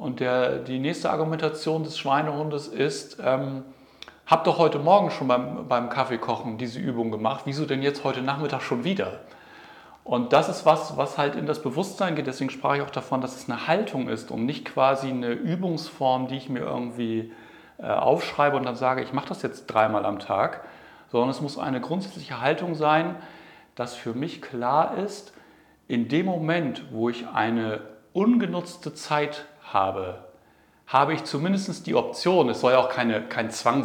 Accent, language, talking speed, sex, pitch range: German, German, 175 wpm, male, 115-150 Hz